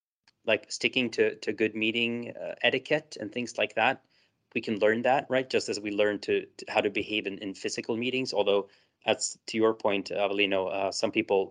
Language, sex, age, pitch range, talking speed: English, male, 20-39, 100-115 Hz, 205 wpm